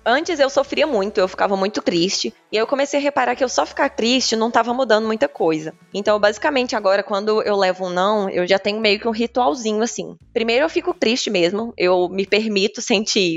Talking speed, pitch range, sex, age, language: 220 wpm, 185-240 Hz, female, 20-39, Portuguese